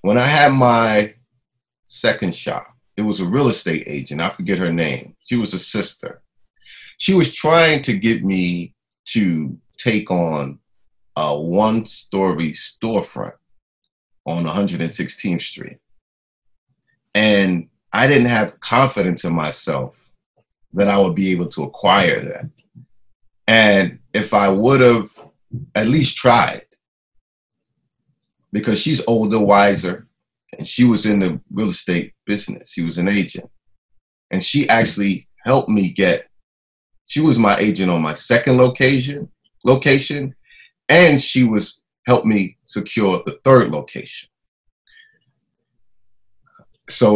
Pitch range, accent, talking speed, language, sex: 95-125 Hz, American, 125 wpm, English, male